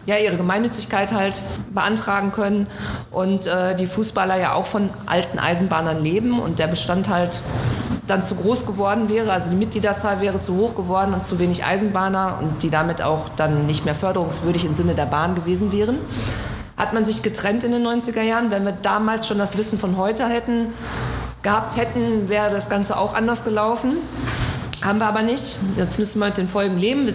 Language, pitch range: German, 185-220 Hz